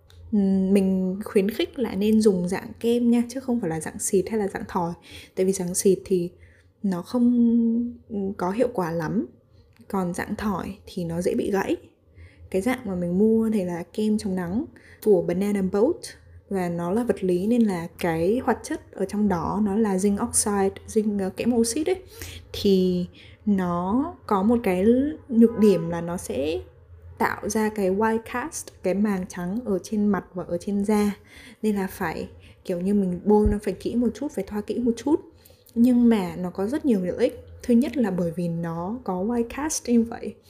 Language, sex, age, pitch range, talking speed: Vietnamese, female, 10-29, 180-225 Hz, 195 wpm